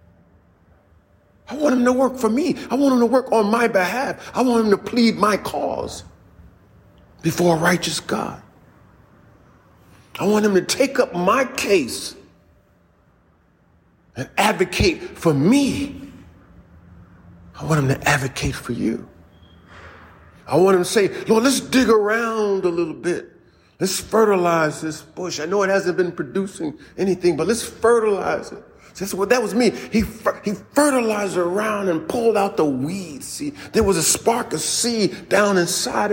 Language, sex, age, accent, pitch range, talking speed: English, male, 40-59, American, 140-215 Hz, 160 wpm